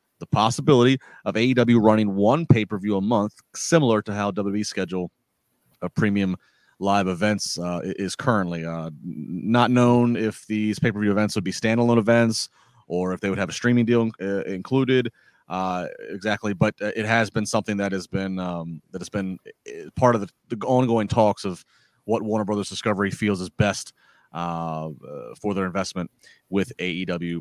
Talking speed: 165 wpm